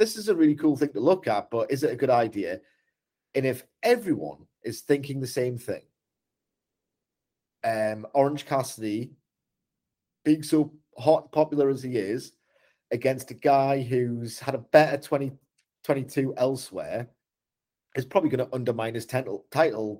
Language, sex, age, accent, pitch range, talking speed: English, male, 30-49, British, 110-145 Hz, 150 wpm